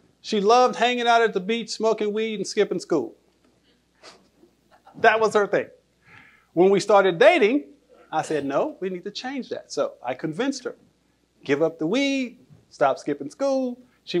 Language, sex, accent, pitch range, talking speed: English, male, American, 145-235 Hz, 170 wpm